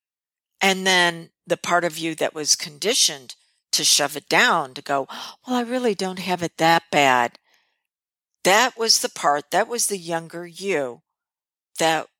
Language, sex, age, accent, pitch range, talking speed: English, female, 50-69, American, 165-220 Hz, 160 wpm